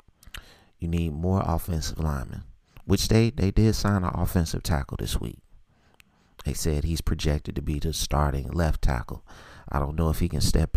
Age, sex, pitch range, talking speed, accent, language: 30-49, male, 75-95 Hz, 180 wpm, American, English